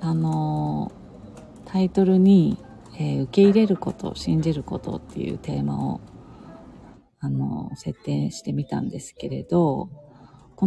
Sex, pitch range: female, 125-185 Hz